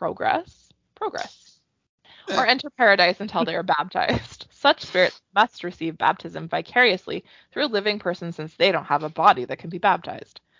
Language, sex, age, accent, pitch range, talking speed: English, female, 20-39, American, 165-200 Hz, 165 wpm